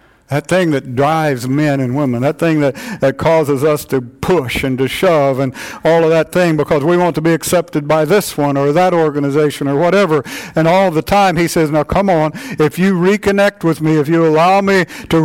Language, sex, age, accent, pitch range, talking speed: English, male, 60-79, American, 145-190 Hz, 220 wpm